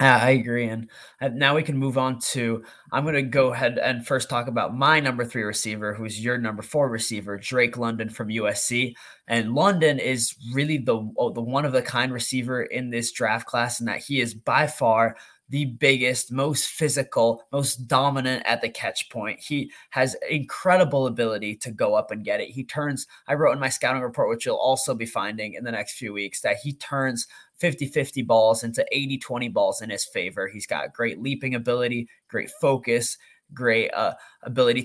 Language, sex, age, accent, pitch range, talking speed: English, male, 20-39, American, 115-140 Hz, 190 wpm